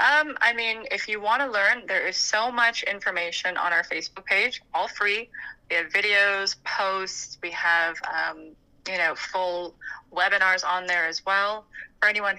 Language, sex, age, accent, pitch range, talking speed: English, female, 20-39, American, 175-205 Hz, 175 wpm